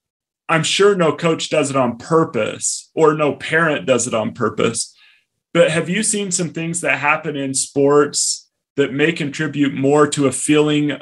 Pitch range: 135-160 Hz